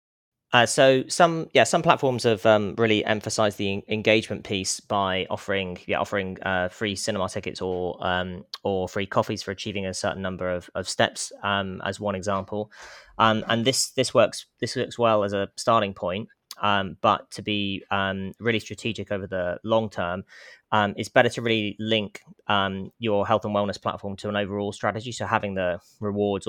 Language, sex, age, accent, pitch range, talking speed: English, male, 20-39, British, 95-110 Hz, 185 wpm